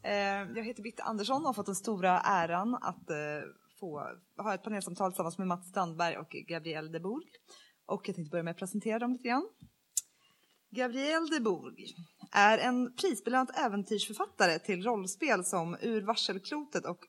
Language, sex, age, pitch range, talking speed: Swedish, female, 20-39, 180-250 Hz, 155 wpm